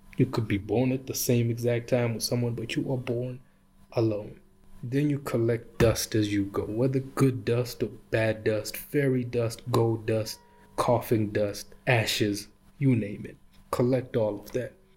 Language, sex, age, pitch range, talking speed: English, male, 20-39, 105-125 Hz, 170 wpm